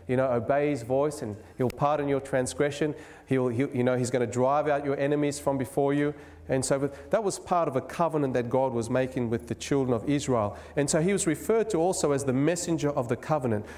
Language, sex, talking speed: English, male, 240 wpm